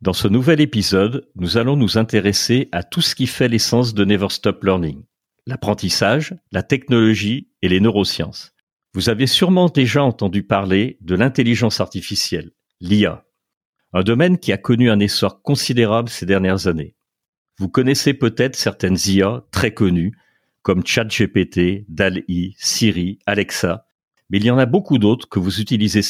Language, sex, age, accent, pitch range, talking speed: French, male, 50-69, French, 100-130 Hz, 155 wpm